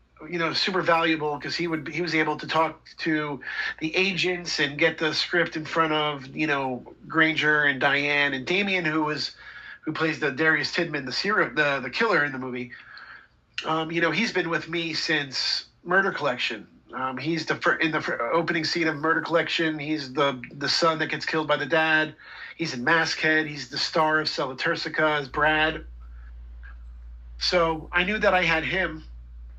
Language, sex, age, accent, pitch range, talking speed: English, male, 40-59, American, 130-170 Hz, 185 wpm